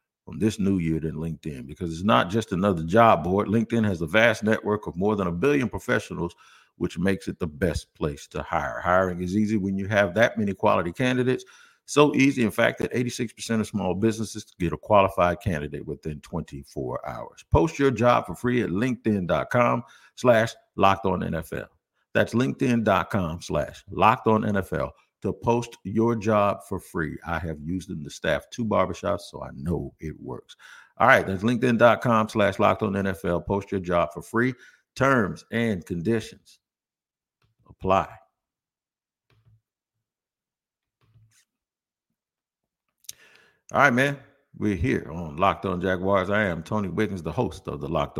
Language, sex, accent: English, male, American